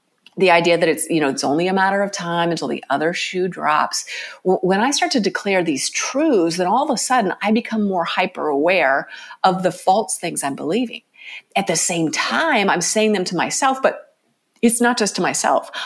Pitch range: 165-235 Hz